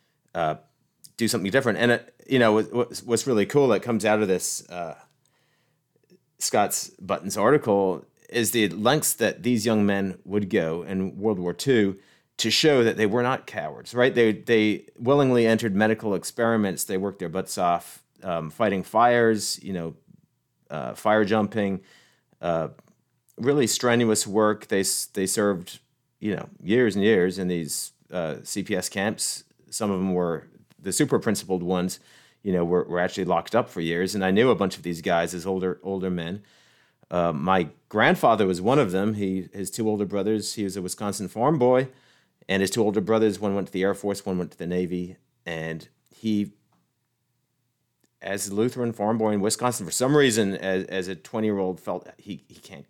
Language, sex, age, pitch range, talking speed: English, male, 30-49, 90-115 Hz, 185 wpm